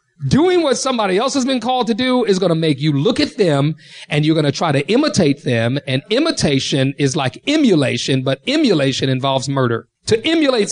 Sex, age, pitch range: male, 40-59, 150-240 Hz